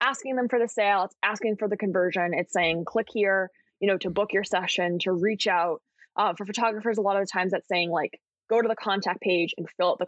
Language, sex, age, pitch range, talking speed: English, female, 20-39, 185-235 Hz, 255 wpm